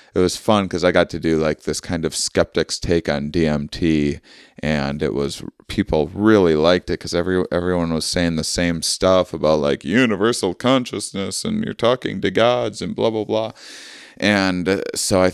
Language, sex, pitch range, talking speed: English, male, 85-100 Hz, 185 wpm